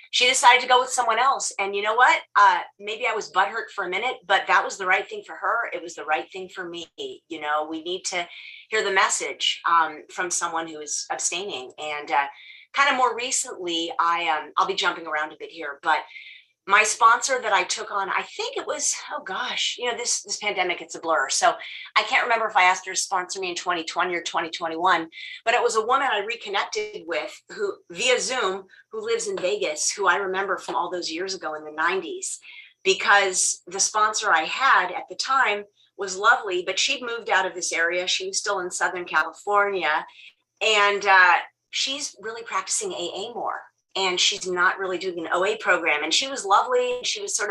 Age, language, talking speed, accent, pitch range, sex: 30-49, English, 210 wpm, American, 175-270 Hz, female